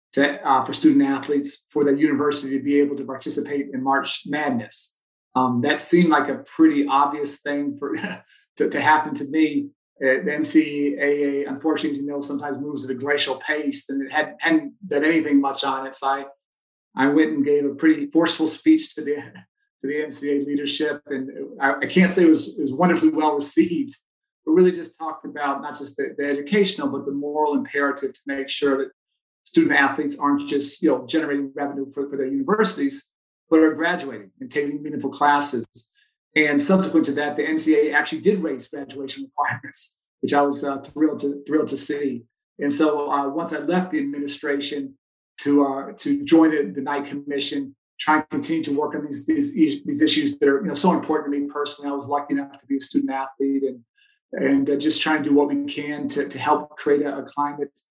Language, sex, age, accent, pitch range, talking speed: English, male, 40-59, American, 140-155 Hz, 205 wpm